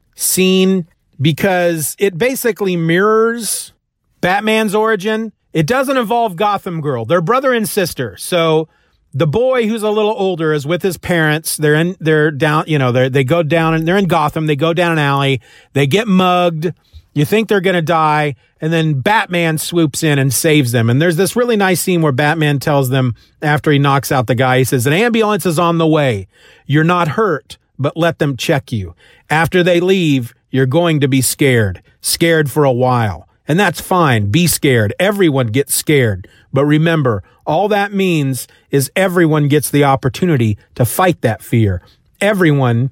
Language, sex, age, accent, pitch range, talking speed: English, male, 40-59, American, 140-200 Hz, 180 wpm